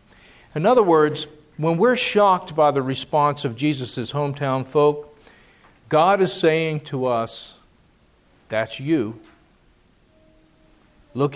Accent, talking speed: American, 110 wpm